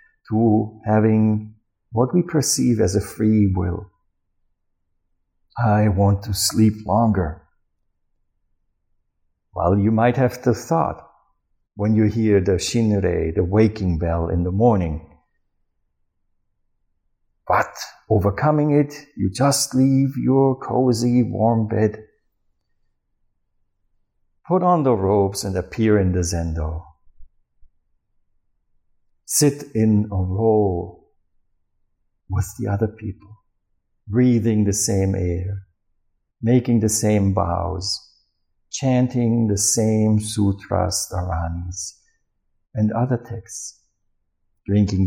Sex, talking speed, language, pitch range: male, 100 wpm, English, 95-115 Hz